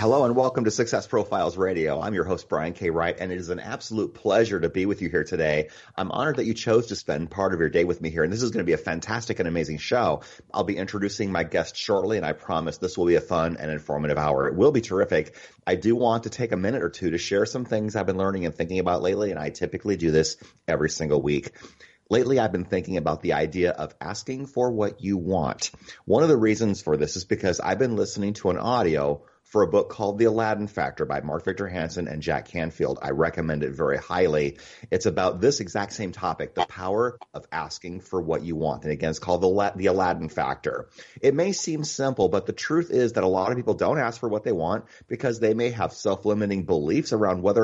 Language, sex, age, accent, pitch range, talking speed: English, male, 30-49, American, 85-120 Hz, 245 wpm